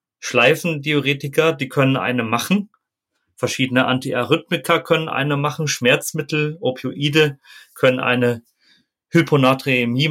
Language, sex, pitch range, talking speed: German, male, 120-145 Hz, 90 wpm